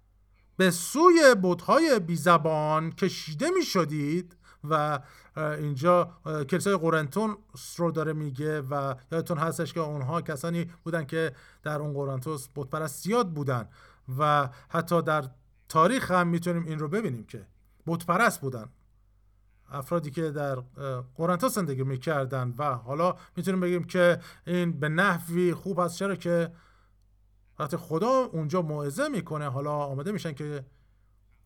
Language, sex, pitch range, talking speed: Persian, male, 140-180 Hz, 130 wpm